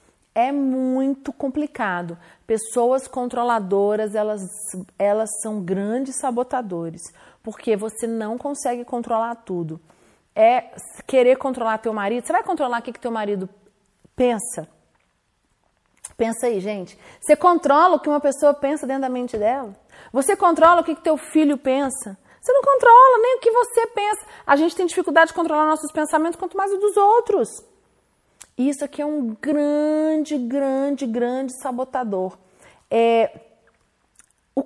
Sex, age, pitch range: female, 40-59, 215-290 Hz